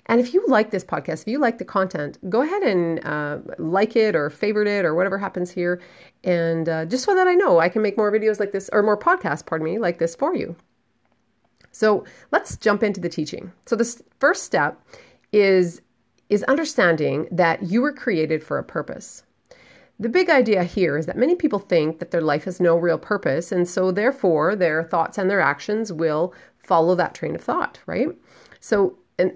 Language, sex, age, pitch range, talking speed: English, female, 30-49, 165-225 Hz, 205 wpm